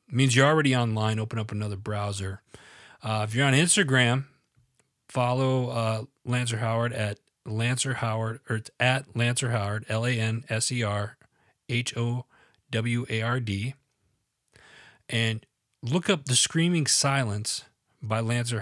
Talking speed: 145 wpm